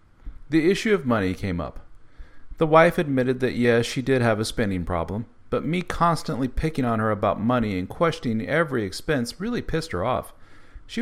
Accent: American